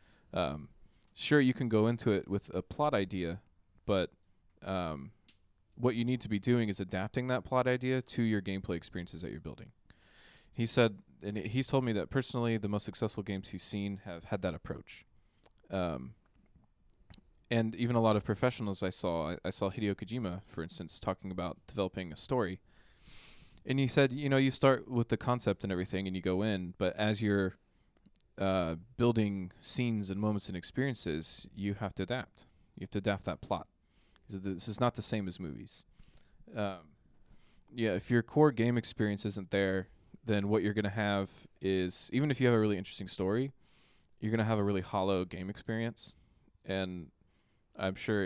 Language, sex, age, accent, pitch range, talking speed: English, male, 20-39, American, 95-115 Hz, 185 wpm